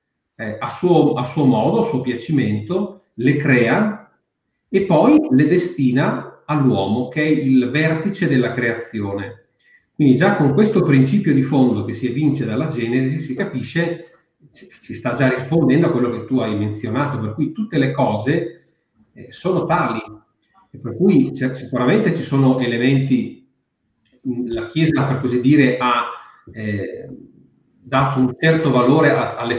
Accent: native